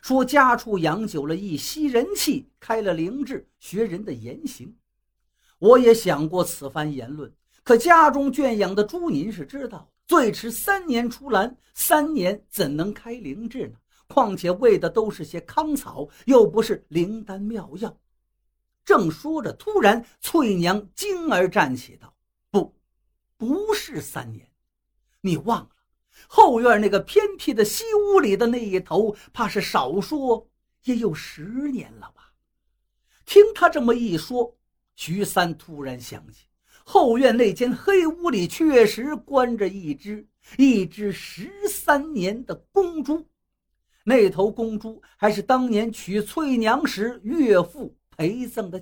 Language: Chinese